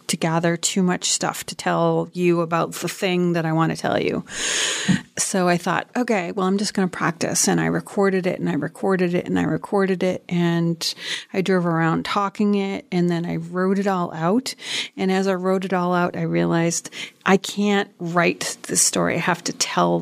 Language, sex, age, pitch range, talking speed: English, female, 30-49, 175-205 Hz, 210 wpm